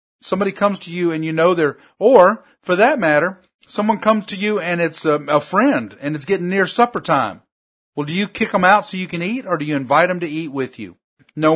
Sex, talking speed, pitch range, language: male, 245 wpm, 140-185 Hz, English